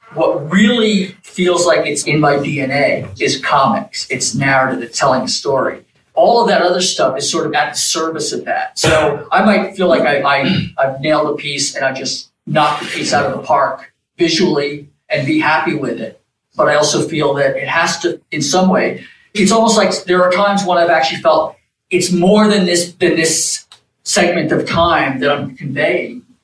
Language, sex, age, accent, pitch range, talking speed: English, male, 40-59, American, 145-180 Hz, 195 wpm